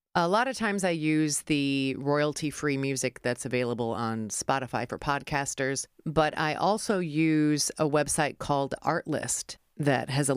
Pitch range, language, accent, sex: 135-190 Hz, English, American, female